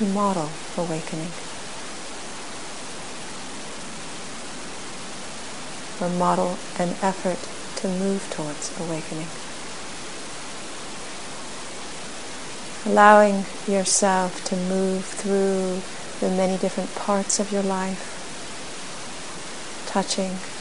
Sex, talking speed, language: female, 65 wpm, English